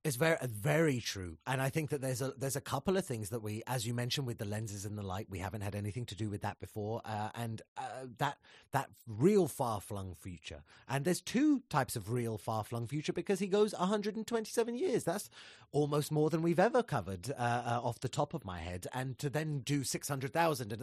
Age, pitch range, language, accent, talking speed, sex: 30-49, 105-150 Hz, English, British, 225 wpm, male